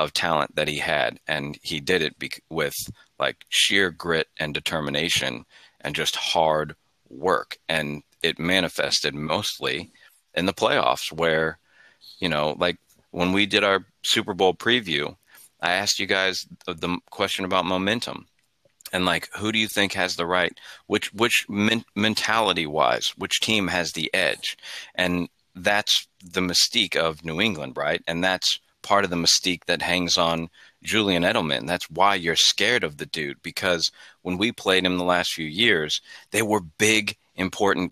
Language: English